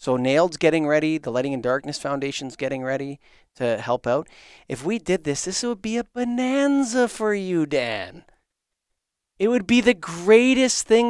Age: 30-49